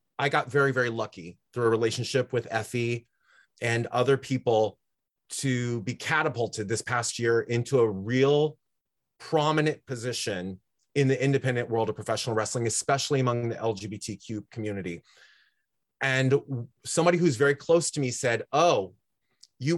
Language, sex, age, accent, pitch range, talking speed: English, male, 30-49, American, 115-140 Hz, 140 wpm